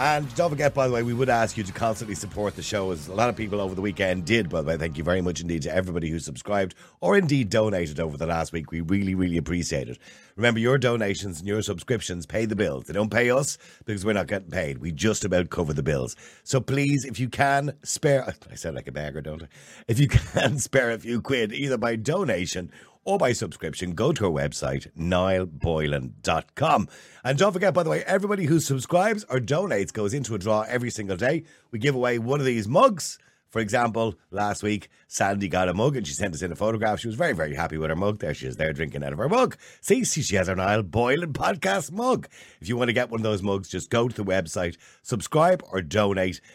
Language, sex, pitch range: English, male, 90-130 Hz